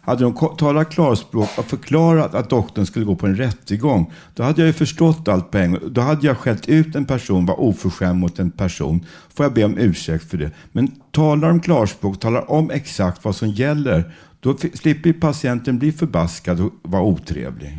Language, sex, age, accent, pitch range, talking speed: Swedish, male, 60-79, native, 90-135 Hz, 195 wpm